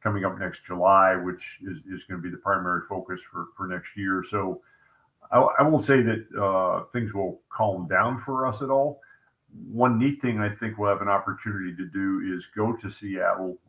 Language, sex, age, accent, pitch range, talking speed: English, male, 50-69, American, 90-110 Hz, 200 wpm